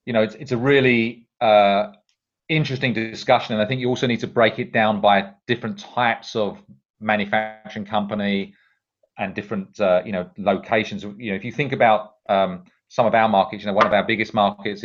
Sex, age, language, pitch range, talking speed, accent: male, 40-59, English, 105-125 Hz, 200 wpm, British